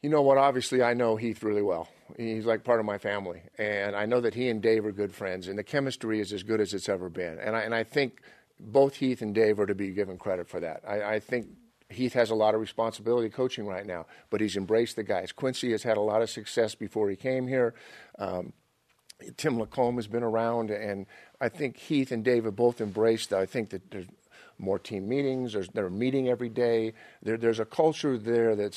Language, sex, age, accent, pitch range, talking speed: English, male, 50-69, American, 105-120 Hz, 240 wpm